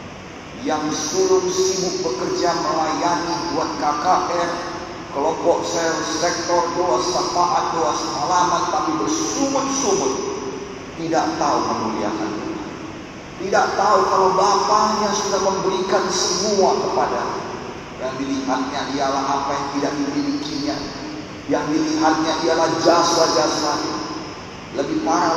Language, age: Indonesian, 40-59